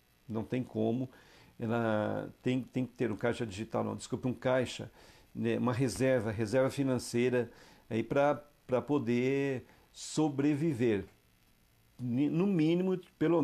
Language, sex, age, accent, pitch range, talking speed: Portuguese, male, 50-69, Brazilian, 115-135 Hz, 115 wpm